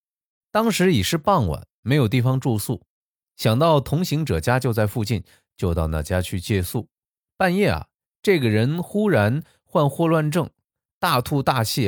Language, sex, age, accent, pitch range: Chinese, male, 20-39, native, 90-140 Hz